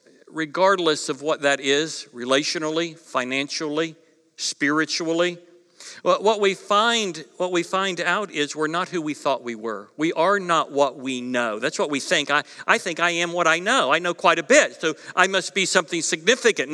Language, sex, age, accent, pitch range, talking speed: English, male, 60-79, American, 150-205 Hz, 185 wpm